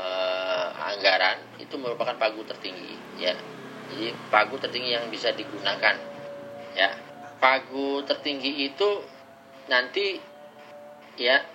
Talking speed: 95 wpm